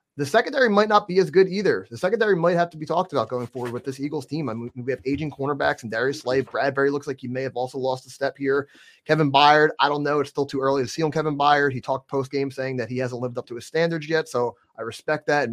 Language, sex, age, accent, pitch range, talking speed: English, male, 30-49, American, 125-145 Hz, 290 wpm